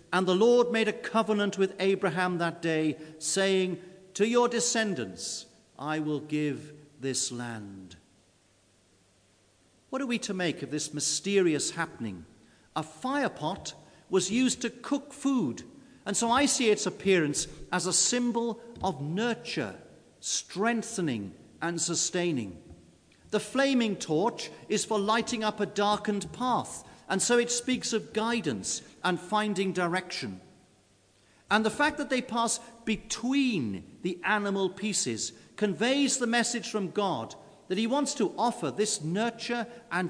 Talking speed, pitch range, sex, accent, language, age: 135 wpm, 155-230 Hz, male, British, English, 50-69